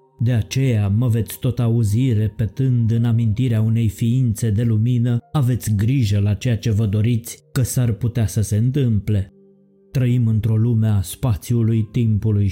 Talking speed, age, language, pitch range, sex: 155 wpm, 20-39, Romanian, 105-125 Hz, male